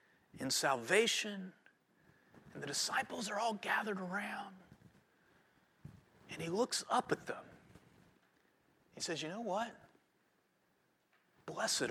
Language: English